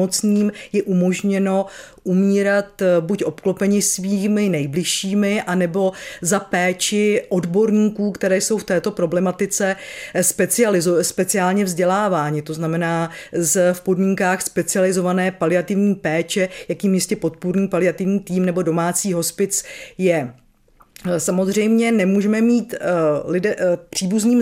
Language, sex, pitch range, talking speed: Czech, female, 180-205 Hz, 105 wpm